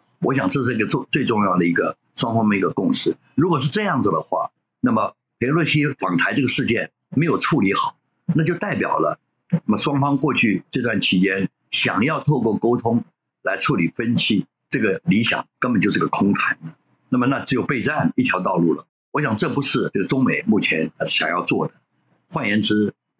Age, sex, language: 50-69, male, Chinese